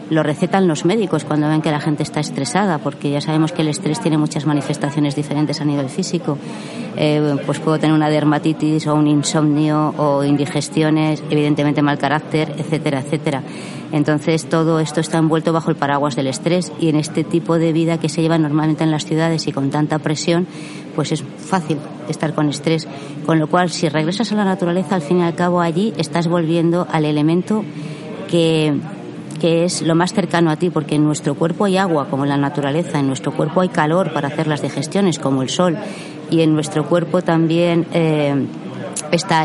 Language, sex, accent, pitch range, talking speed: Spanish, female, Spanish, 150-170 Hz, 195 wpm